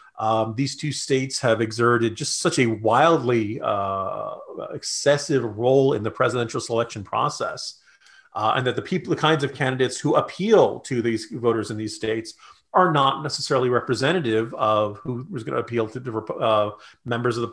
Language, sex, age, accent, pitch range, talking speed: English, male, 40-59, American, 110-150 Hz, 170 wpm